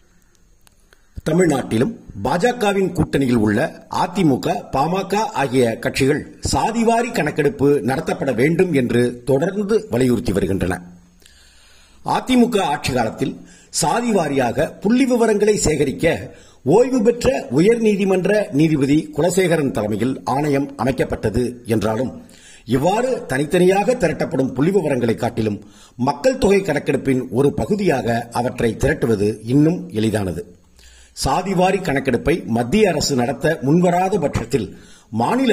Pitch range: 105-155 Hz